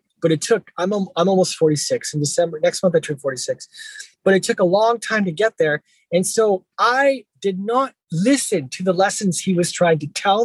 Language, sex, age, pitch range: English, male, 20-39, 180-240 Hz